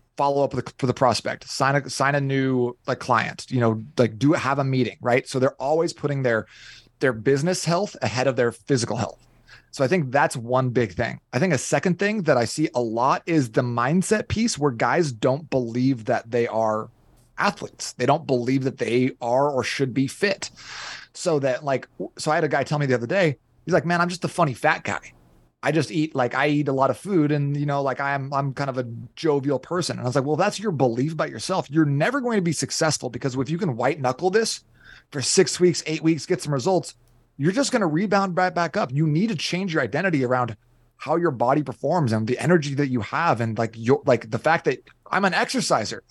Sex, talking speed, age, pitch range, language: male, 235 wpm, 30-49, 125-165 Hz, English